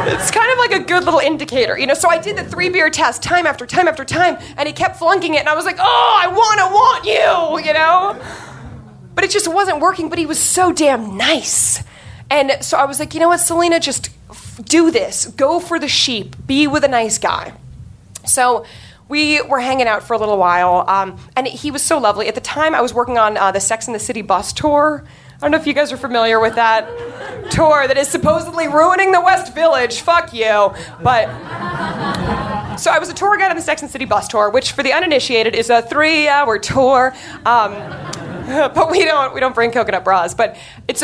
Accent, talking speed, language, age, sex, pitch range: American, 225 wpm, English, 20-39, female, 225-330 Hz